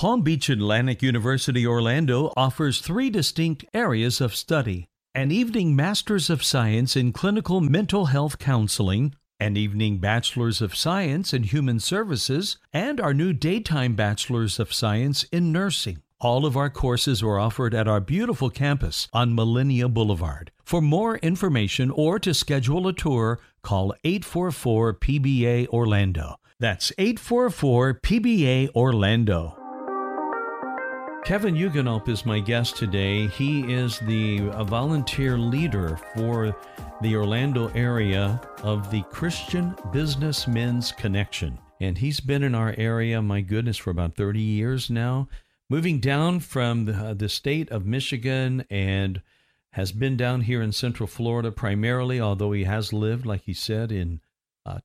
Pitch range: 105-140 Hz